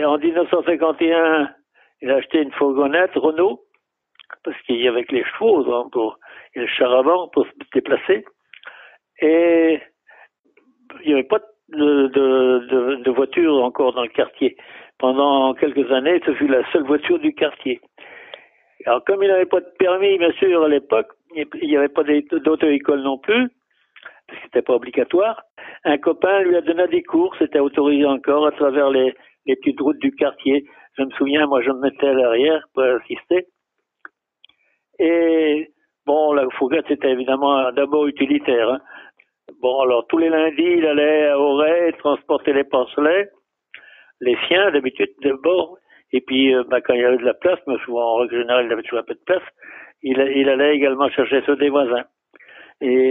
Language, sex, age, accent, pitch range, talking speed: French, male, 60-79, French, 135-175 Hz, 180 wpm